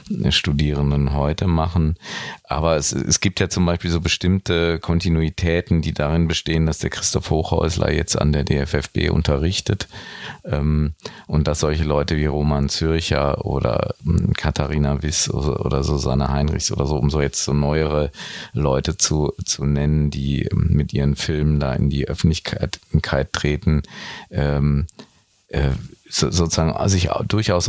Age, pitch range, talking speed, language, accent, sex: 40-59, 75-85 Hz, 145 wpm, German, German, male